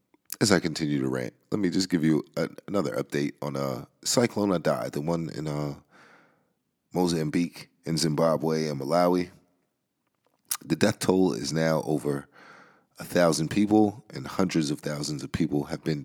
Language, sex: English, male